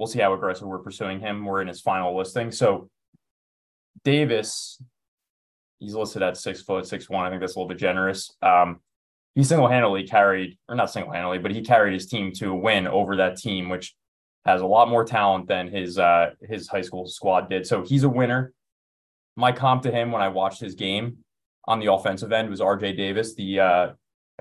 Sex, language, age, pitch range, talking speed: male, English, 20-39, 90-110 Hz, 200 wpm